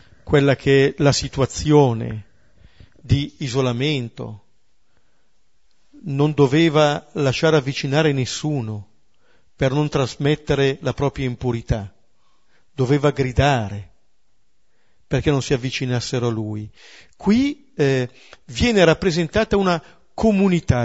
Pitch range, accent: 125-180 Hz, native